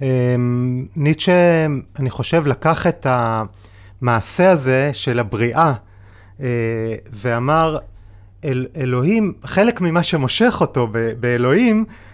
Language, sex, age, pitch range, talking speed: Hebrew, male, 30-49, 125-185 Hz, 90 wpm